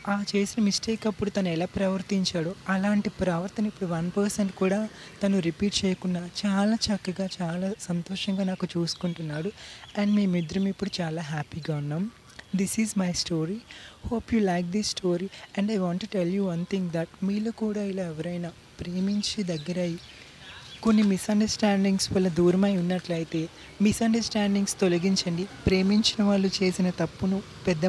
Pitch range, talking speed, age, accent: 175-205 Hz, 140 wpm, 30-49, native